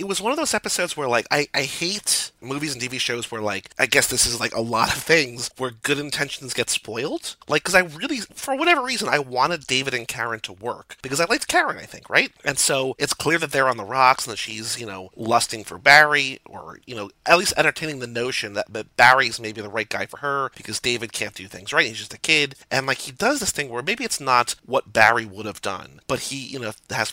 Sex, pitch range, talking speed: male, 110-145 Hz, 255 wpm